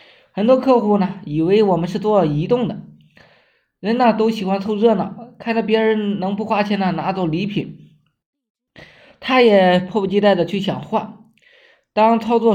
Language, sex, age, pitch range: Chinese, male, 20-39, 165-215 Hz